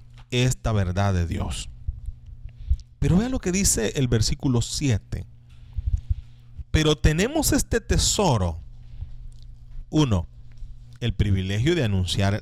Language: Spanish